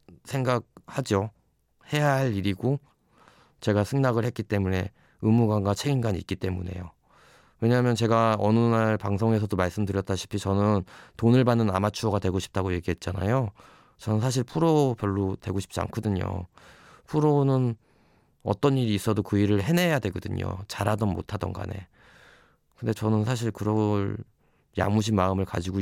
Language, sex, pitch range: Korean, male, 95-120 Hz